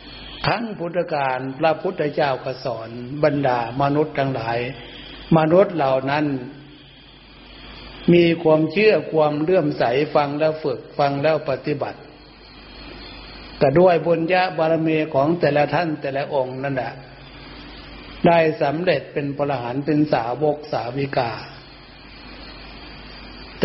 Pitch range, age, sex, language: 140-170 Hz, 60-79, male, Thai